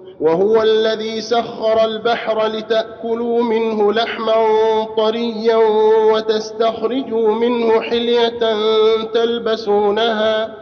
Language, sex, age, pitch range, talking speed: Arabic, male, 50-69, 200-225 Hz, 70 wpm